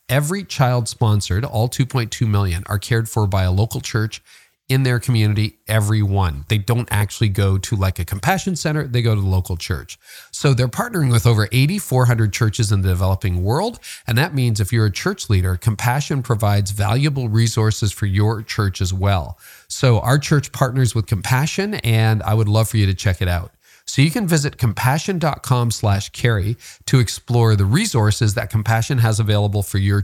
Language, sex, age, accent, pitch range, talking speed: English, male, 40-59, American, 105-130 Hz, 185 wpm